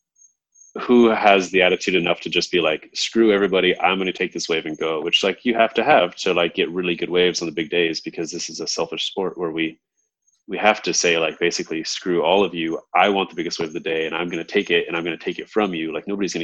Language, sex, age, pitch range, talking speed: English, male, 30-49, 85-100 Hz, 285 wpm